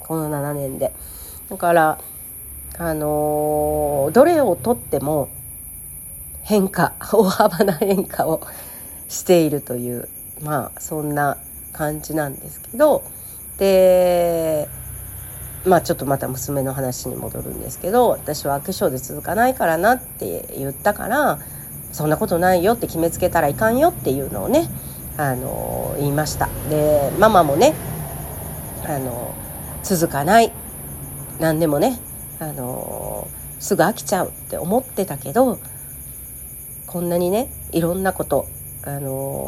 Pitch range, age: 125-185 Hz, 50-69